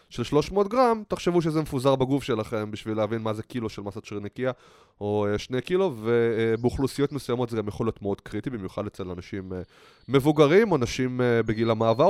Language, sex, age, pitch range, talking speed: Hebrew, male, 20-39, 105-155 Hz, 180 wpm